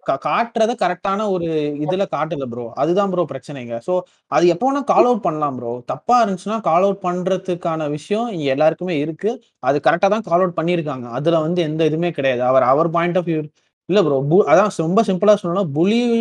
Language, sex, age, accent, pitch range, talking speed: Tamil, male, 30-49, native, 145-195 Hz, 180 wpm